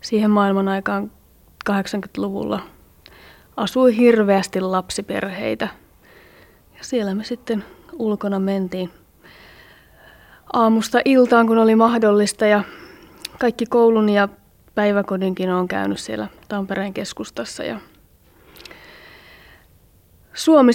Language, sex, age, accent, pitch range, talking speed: Finnish, female, 30-49, native, 185-225 Hz, 85 wpm